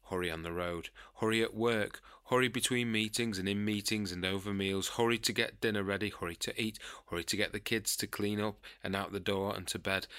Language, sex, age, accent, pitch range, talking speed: English, male, 30-49, British, 90-115 Hz, 230 wpm